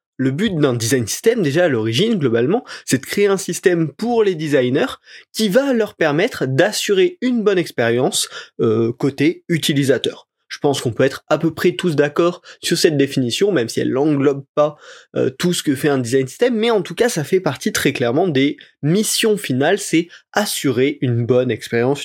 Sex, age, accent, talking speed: male, 20-39, French, 190 wpm